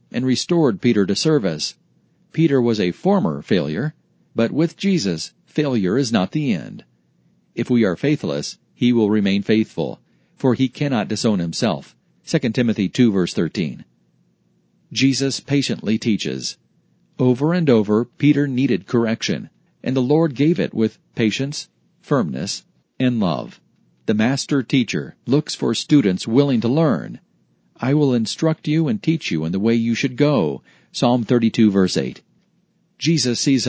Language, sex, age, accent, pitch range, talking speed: English, male, 40-59, American, 110-145 Hz, 150 wpm